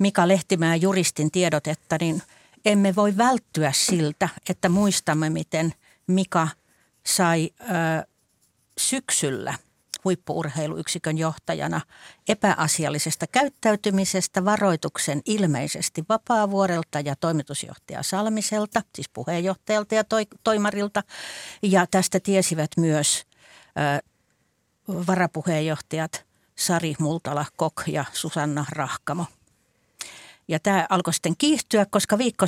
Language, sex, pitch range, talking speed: Finnish, female, 155-200 Hz, 90 wpm